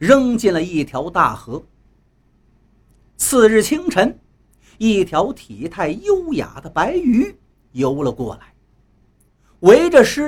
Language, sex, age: Chinese, male, 50-69